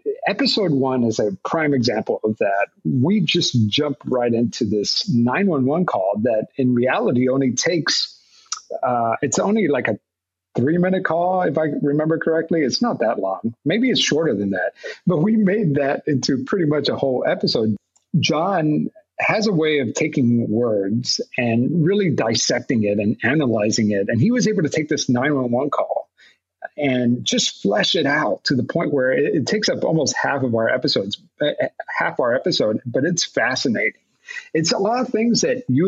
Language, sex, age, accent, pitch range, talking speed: English, male, 50-69, American, 120-175 Hz, 180 wpm